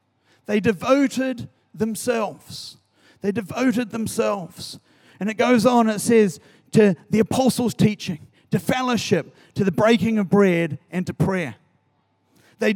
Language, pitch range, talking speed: English, 160-220 Hz, 125 wpm